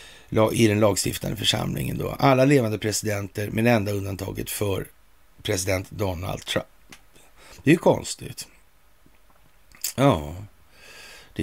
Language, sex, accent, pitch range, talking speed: Swedish, male, native, 95-115 Hz, 110 wpm